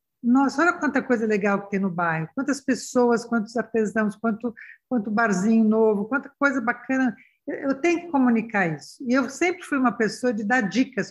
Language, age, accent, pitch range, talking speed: Portuguese, 60-79, Brazilian, 205-255 Hz, 185 wpm